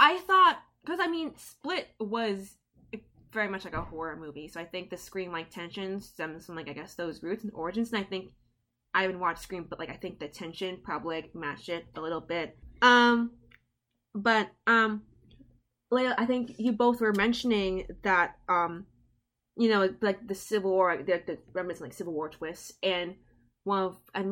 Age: 20-39